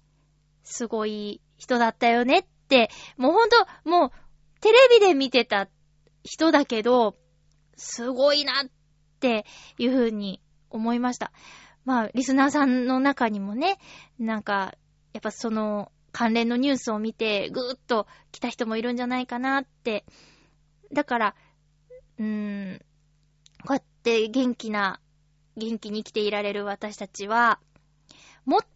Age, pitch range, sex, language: 20-39, 185-255 Hz, female, Japanese